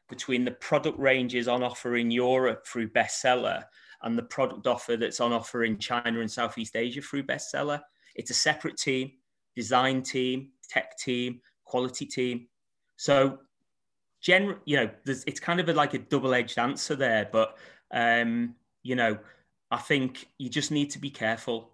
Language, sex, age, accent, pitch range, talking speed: English, male, 30-49, British, 115-135 Hz, 165 wpm